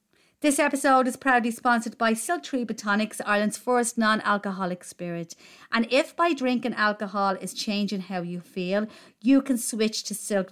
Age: 40-59